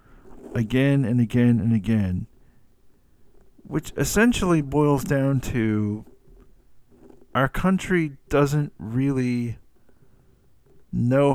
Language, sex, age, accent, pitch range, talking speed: English, male, 50-69, American, 110-140 Hz, 80 wpm